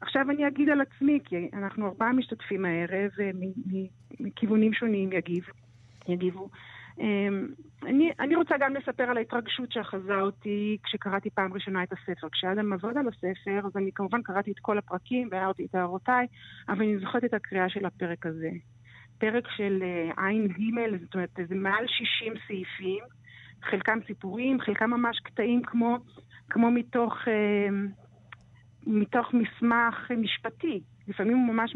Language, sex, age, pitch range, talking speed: Hebrew, female, 40-59, 190-235 Hz, 140 wpm